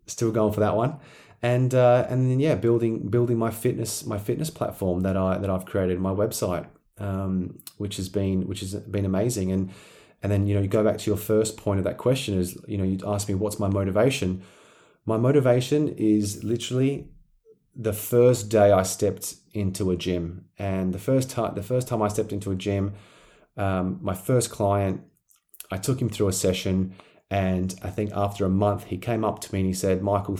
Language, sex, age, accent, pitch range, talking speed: English, male, 30-49, Australian, 95-110 Hz, 205 wpm